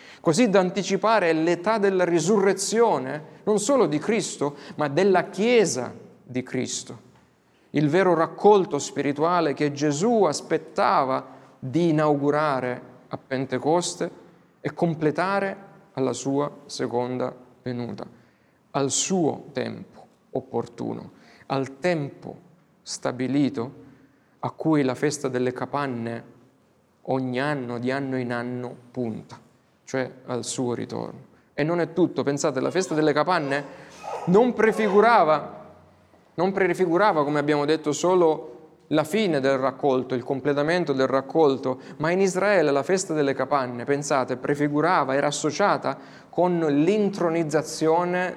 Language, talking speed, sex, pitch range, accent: Italian, 115 wpm, male, 130-175 Hz, native